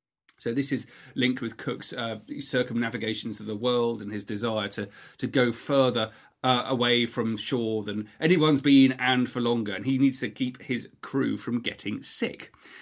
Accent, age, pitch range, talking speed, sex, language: British, 40-59, 115-155 Hz, 180 wpm, male, English